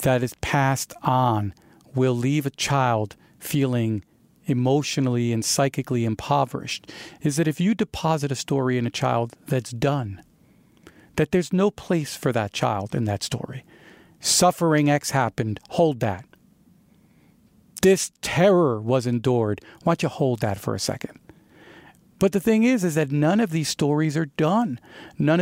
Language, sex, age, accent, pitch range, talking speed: English, male, 40-59, American, 130-170 Hz, 155 wpm